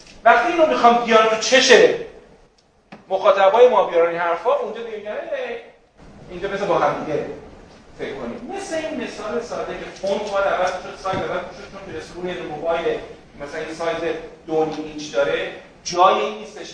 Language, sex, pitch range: Persian, male, 165-235 Hz